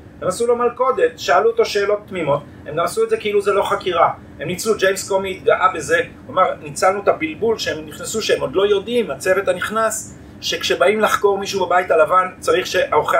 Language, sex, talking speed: Hebrew, male, 195 wpm